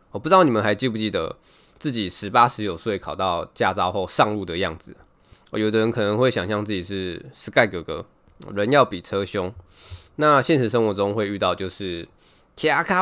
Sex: male